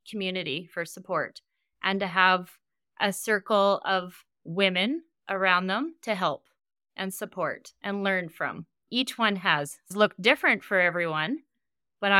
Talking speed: 135 wpm